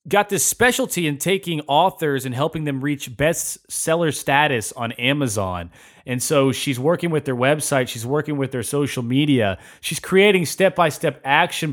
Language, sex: English, male